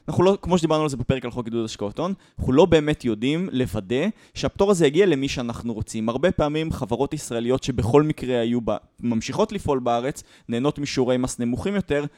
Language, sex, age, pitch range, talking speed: Hebrew, male, 20-39, 125-190 Hz, 190 wpm